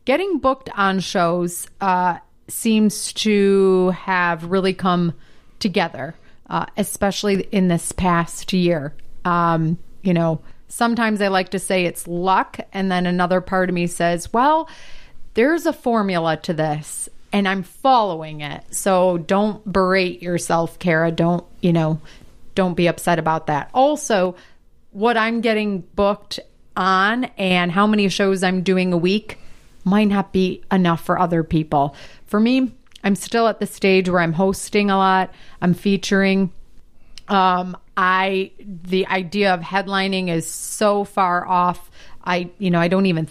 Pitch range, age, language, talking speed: 175-200 Hz, 30-49, English, 150 wpm